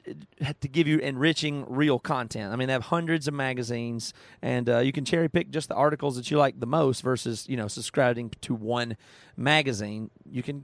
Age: 30-49